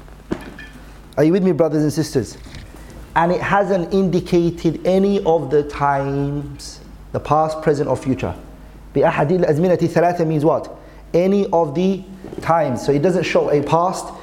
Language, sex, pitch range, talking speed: English, male, 140-185 Hz, 140 wpm